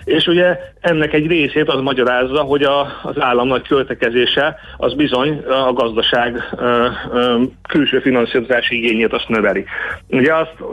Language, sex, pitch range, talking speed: Hungarian, male, 120-160 Hz, 145 wpm